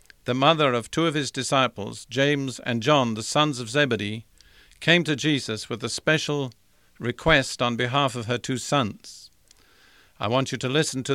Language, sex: English, male